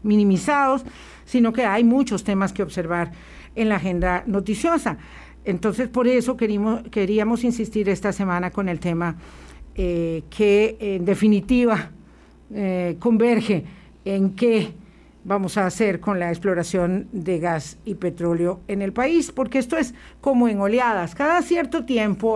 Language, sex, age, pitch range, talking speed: Spanish, female, 50-69, 185-240 Hz, 140 wpm